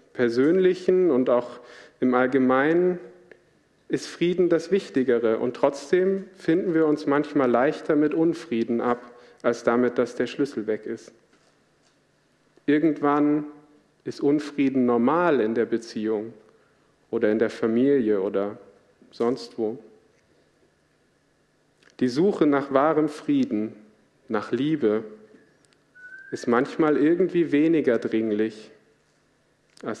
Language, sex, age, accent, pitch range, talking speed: German, male, 40-59, German, 110-150 Hz, 105 wpm